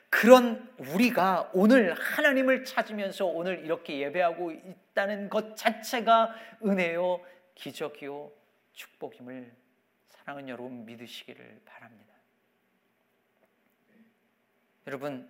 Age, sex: 40-59, male